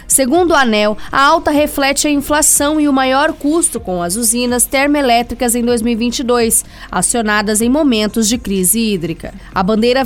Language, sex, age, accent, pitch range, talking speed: Portuguese, female, 20-39, Brazilian, 220-280 Hz, 155 wpm